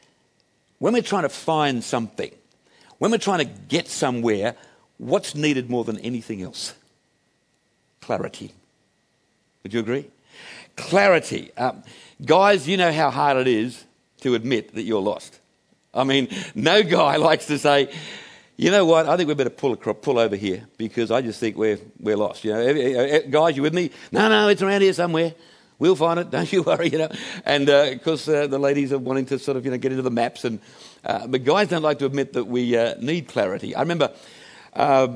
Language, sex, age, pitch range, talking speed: English, male, 60-79, 115-155 Hz, 200 wpm